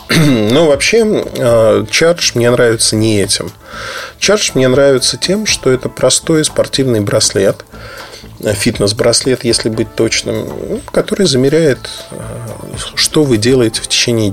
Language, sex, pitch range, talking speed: Russian, male, 105-125 Hz, 115 wpm